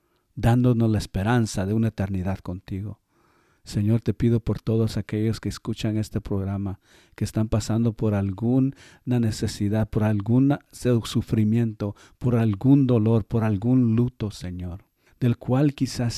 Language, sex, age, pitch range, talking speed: Spanish, male, 50-69, 105-130 Hz, 135 wpm